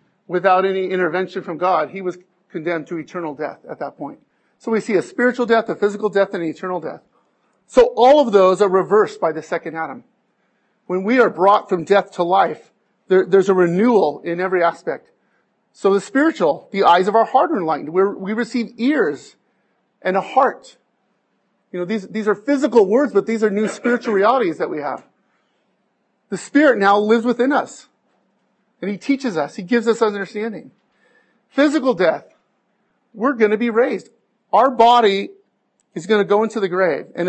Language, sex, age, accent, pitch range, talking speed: English, male, 40-59, American, 185-230 Hz, 185 wpm